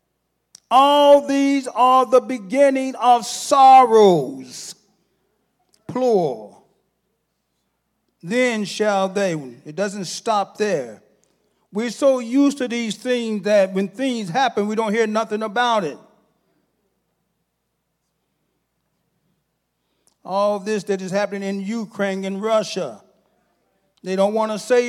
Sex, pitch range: male, 200-260 Hz